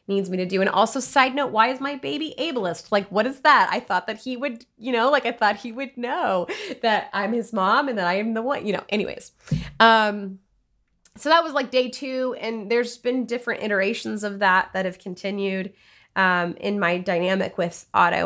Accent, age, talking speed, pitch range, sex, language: American, 20-39, 215 wpm, 185-245 Hz, female, English